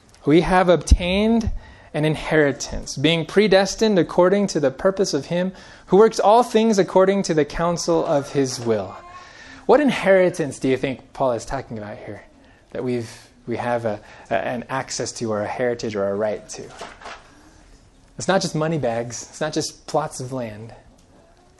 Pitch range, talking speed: 125-185 Hz, 170 wpm